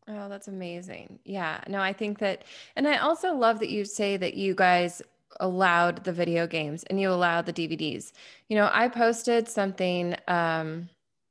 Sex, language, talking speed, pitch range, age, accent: female, English, 175 wpm, 180-225 Hz, 20-39, American